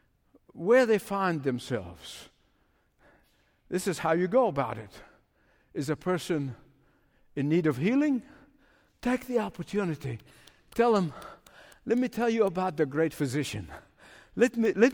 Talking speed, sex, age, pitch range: 130 wpm, male, 60-79, 170-235 Hz